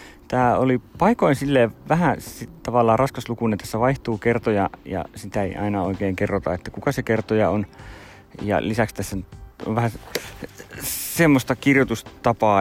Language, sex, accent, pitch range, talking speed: Finnish, male, native, 95-110 Hz, 135 wpm